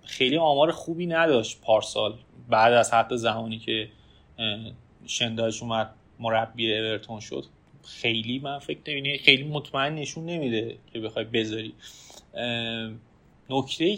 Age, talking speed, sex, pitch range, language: 30-49, 115 wpm, male, 115-150 Hz, Persian